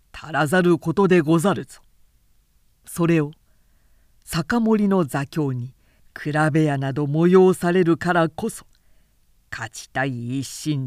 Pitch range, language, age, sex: 135-175 Hz, Japanese, 50-69, female